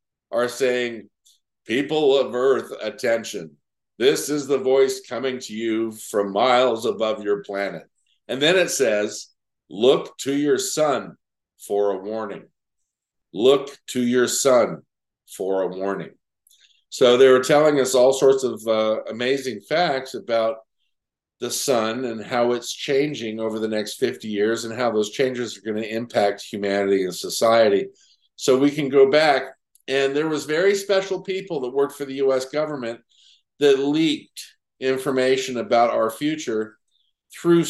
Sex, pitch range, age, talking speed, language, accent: male, 110-145 Hz, 50-69, 150 wpm, English, American